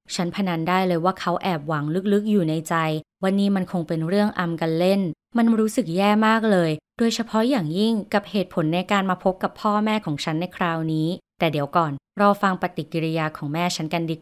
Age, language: 20-39, Thai